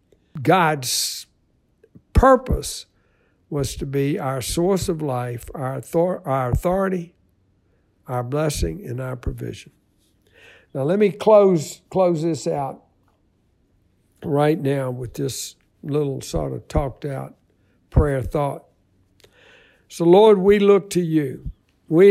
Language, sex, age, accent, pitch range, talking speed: English, male, 60-79, American, 130-180 Hz, 110 wpm